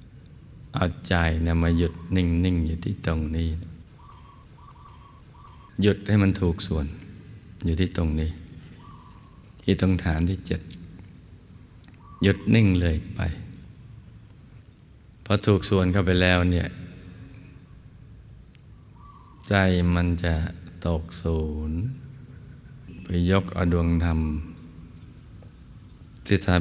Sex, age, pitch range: male, 20-39, 85-100 Hz